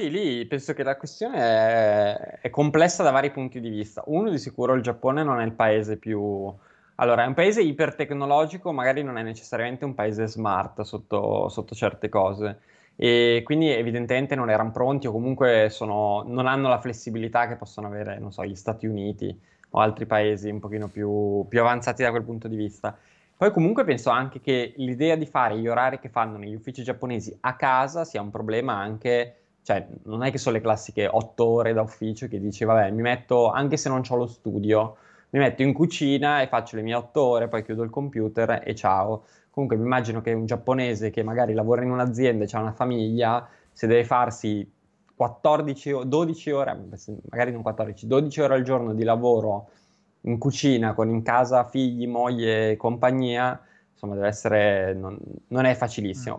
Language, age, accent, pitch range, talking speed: Italian, 20-39, native, 110-130 Hz, 190 wpm